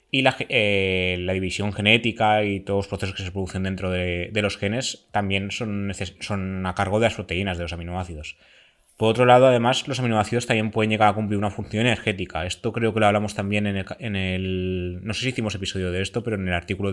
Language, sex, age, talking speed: Spanish, male, 20-39, 220 wpm